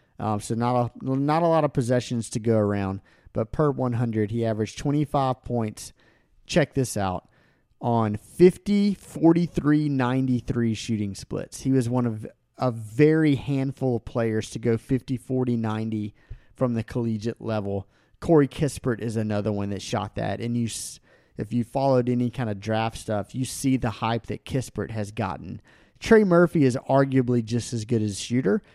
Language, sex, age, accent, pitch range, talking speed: English, male, 30-49, American, 115-140 Hz, 170 wpm